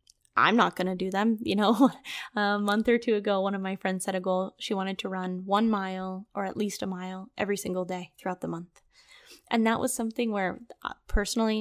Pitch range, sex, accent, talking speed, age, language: 190-230 Hz, female, American, 220 wpm, 10-29, English